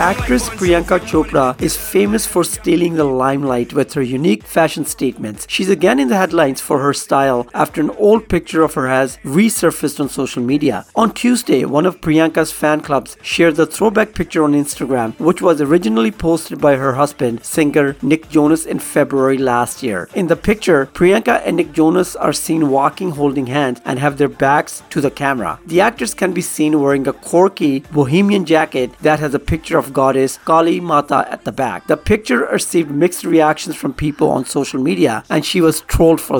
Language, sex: English, male